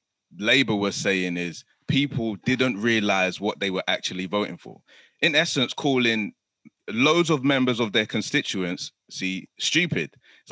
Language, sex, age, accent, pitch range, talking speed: English, male, 20-39, British, 95-125 Hz, 145 wpm